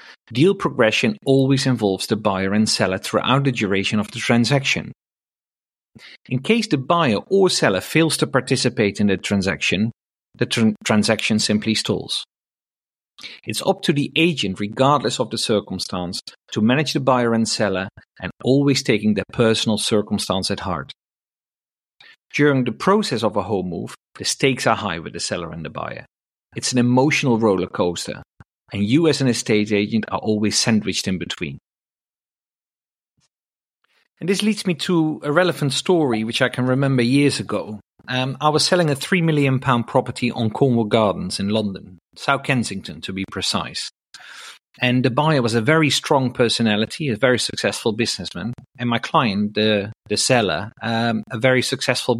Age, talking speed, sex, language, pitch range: 40-59, 165 wpm, male, English, 105-140 Hz